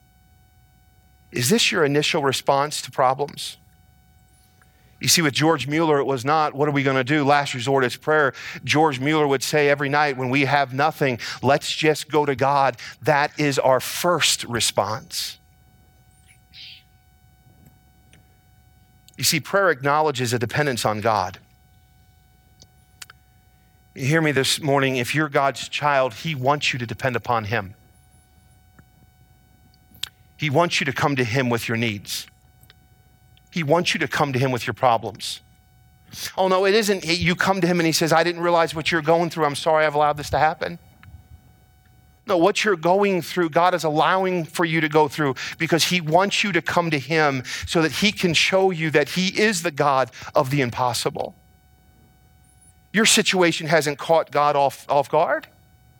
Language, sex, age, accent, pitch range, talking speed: English, male, 40-59, American, 130-165 Hz, 165 wpm